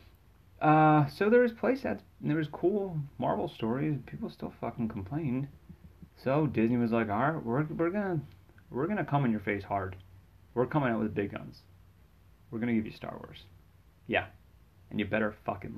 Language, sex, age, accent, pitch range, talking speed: English, male, 30-49, American, 100-130 Hz, 180 wpm